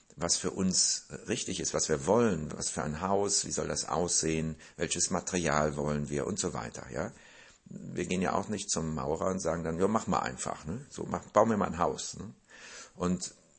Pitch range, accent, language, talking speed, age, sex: 75-85 Hz, German, German, 210 wpm, 60-79, male